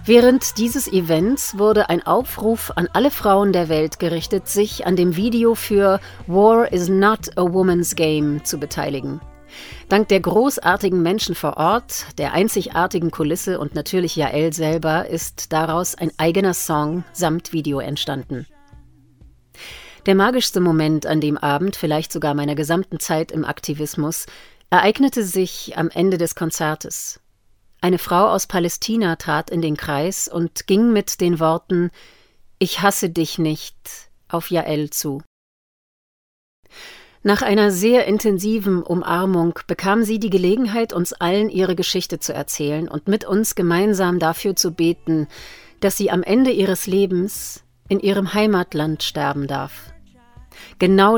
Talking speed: 140 wpm